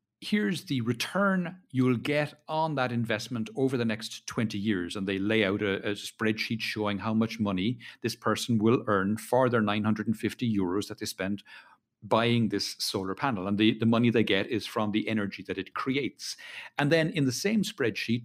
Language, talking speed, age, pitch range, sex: English, 190 wpm, 50-69, 105-135 Hz, male